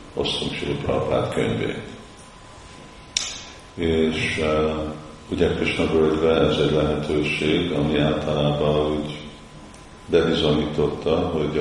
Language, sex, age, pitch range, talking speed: Hungarian, male, 50-69, 75-80 Hz, 85 wpm